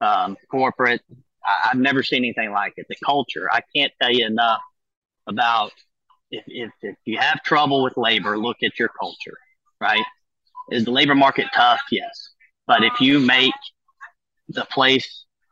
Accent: American